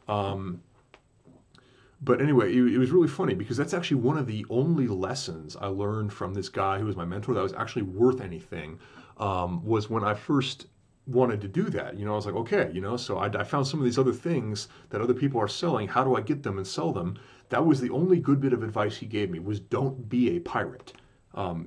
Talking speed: 240 wpm